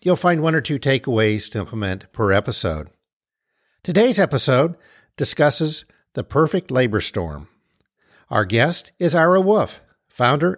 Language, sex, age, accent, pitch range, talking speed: English, male, 50-69, American, 110-170 Hz, 130 wpm